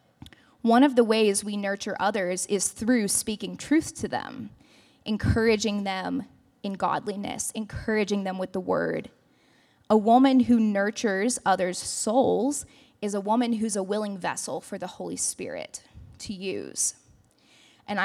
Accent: American